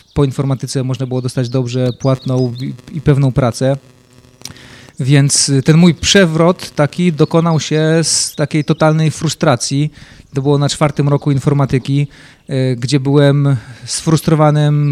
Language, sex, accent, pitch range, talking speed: Polish, male, native, 135-150 Hz, 120 wpm